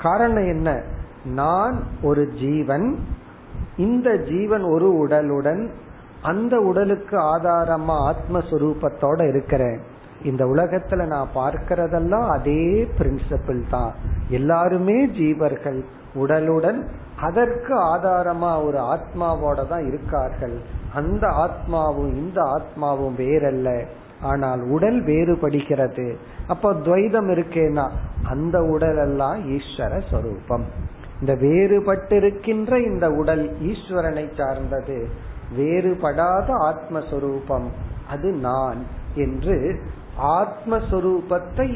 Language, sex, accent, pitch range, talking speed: Tamil, male, native, 135-175 Hz, 75 wpm